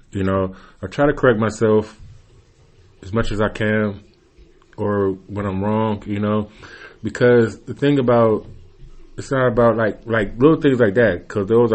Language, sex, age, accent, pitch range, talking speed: English, male, 30-49, American, 95-110 Hz, 170 wpm